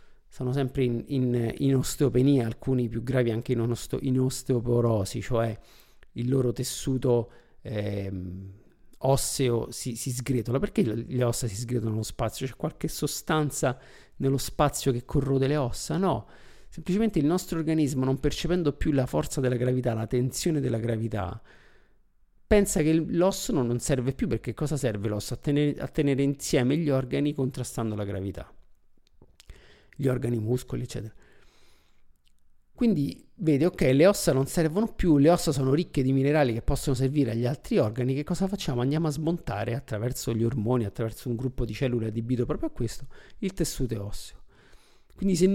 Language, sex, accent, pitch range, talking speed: Italian, male, native, 120-155 Hz, 155 wpm